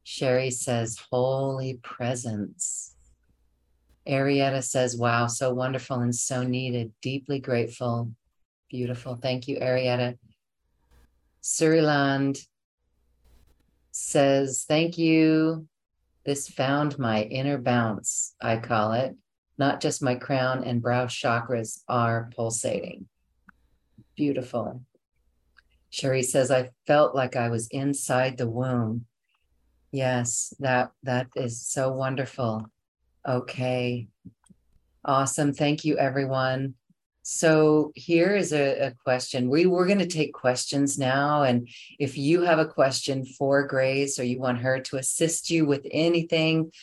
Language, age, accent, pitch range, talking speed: English, 50-69, American, 120-145 Hz, 115 wpm